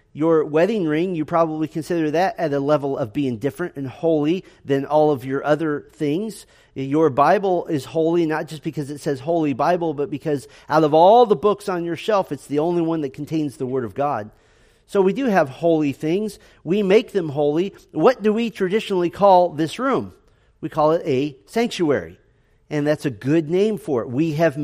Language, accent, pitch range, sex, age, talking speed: English, American, 140-175 Hz, male, 40-59, 200 wpm